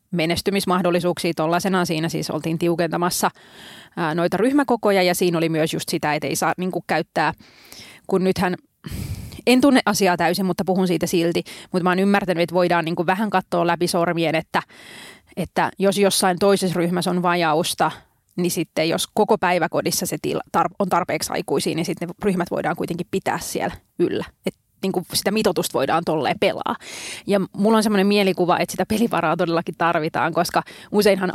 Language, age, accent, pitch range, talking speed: Finnish, 30-49, native, 170-200 Hz, 165 wpm